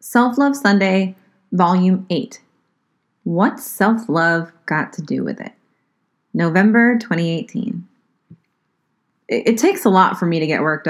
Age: 20-39